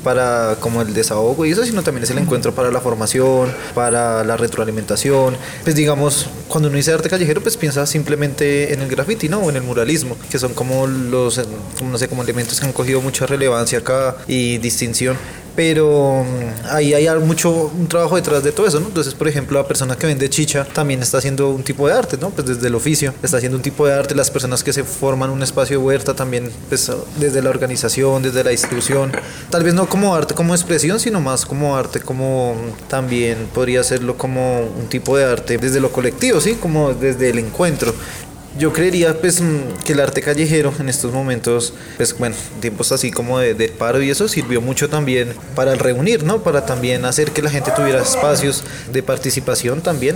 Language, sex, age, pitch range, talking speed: Spanish, male, 20-39, 125-150 Hz, 205 wpm